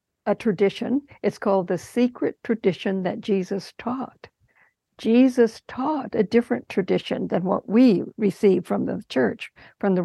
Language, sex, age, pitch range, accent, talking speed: English, female, 60-79, 190-235 Hz, American, 145 wpm